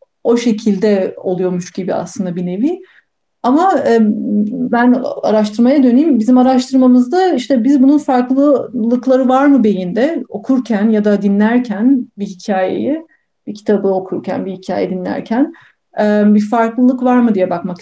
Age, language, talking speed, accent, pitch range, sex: 40-59, Turkish, 130 wpm, native, 195-255 Hz, female